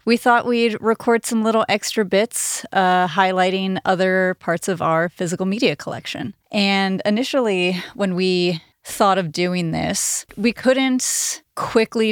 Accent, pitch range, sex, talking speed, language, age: American, 175-210 Hz, female, 140 wpm, English, 30-49